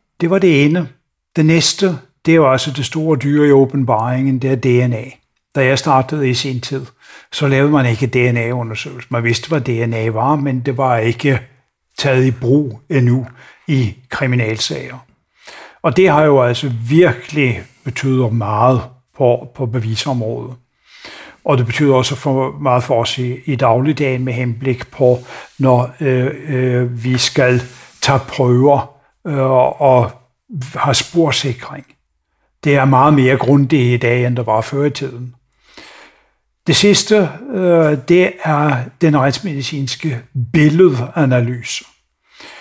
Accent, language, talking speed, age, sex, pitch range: native, Danish, 140 wpm, 60-79, male, 125-145 Hz